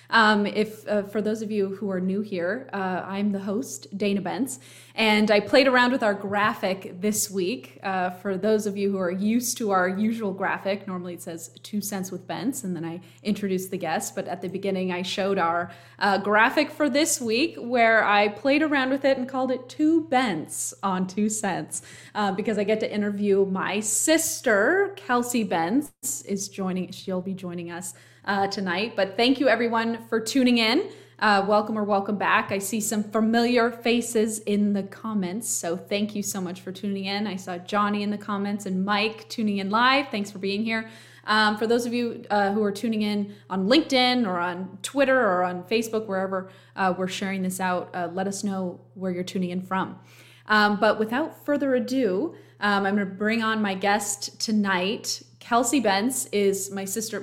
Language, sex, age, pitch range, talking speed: English, female, 20-39, 190-225 Hz, 200 wpm